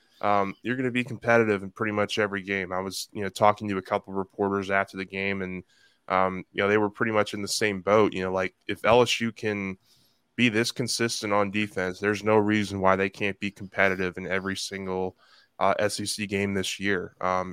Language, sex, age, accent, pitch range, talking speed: English, male, 10-29, American, 95-110 Hz, 220 wpm